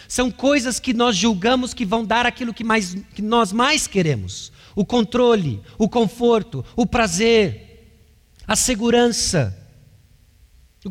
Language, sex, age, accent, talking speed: Portuguese, male, 50-69, Brazilian, 125 wpm